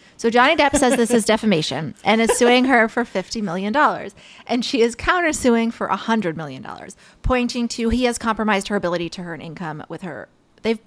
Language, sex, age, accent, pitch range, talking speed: English, female, 20-39, American, 175-230 Hz, 190 wpm